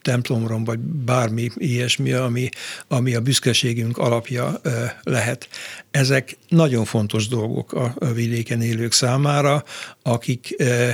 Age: 60-79